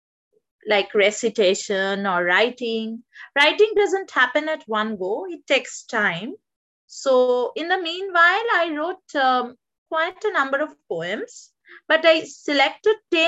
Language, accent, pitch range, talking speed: Hindi, native, 225-360 Hz, 125 wpm